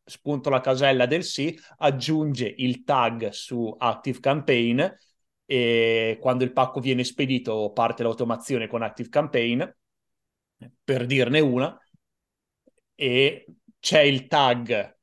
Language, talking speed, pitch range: Italian, 115 wpm, 115-135 Hz